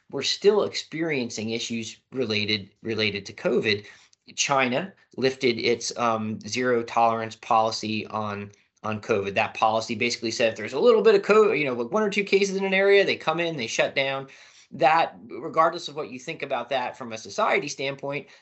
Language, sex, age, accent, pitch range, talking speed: English, male, 30-49, American, 115-135 Hz, 185 wpm